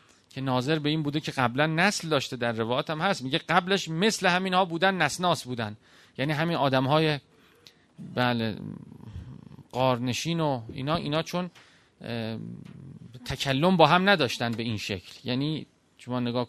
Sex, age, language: male, 40-59, Persian